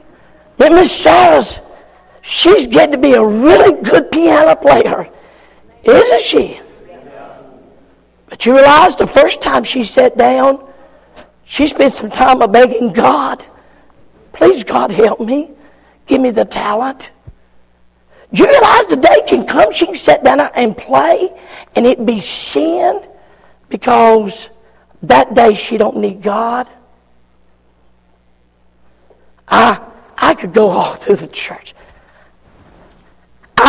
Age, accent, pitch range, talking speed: 50-69, American, 230-340 Hz, 125 wpm